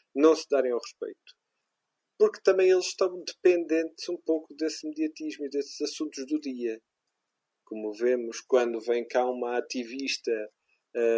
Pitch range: 145-175 Hz